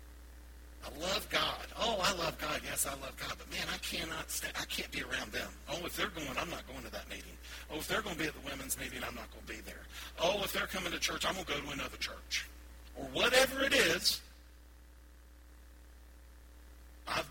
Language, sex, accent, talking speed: English, male, American, 225 wpm